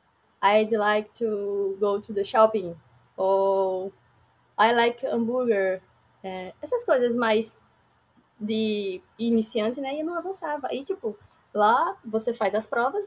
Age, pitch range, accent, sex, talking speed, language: 10-29, 195-250 Hz, Brazilian, female, 130 wpm, Portuguese